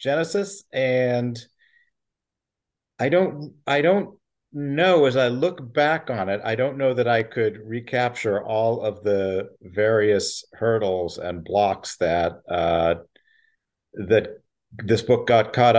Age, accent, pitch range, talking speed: 50-69, American, 95-120 Hz, 130 wpm